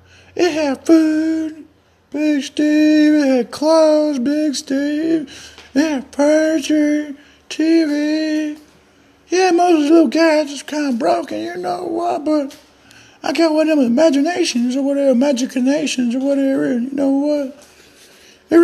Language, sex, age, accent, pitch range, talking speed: English, male, 50-69, American, 275-325 Hz, 140 wpm